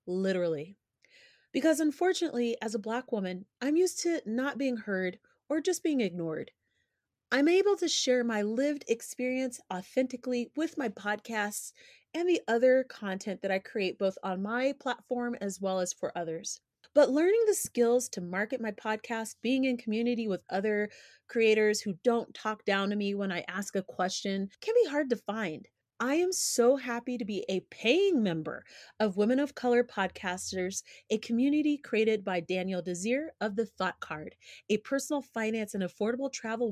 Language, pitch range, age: English, 200-260 Hz, 30-49